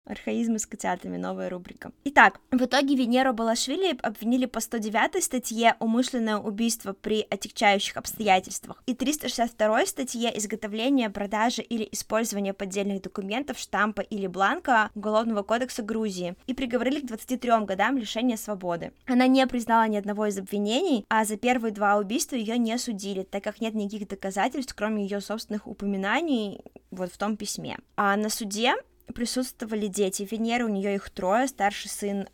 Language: Russian